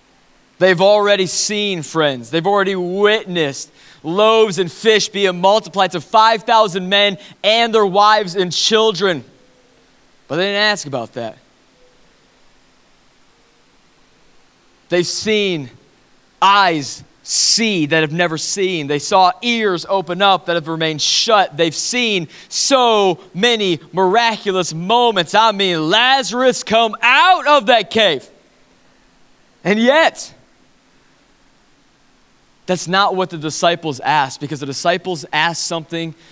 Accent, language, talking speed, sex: American, English, 115 wpm, male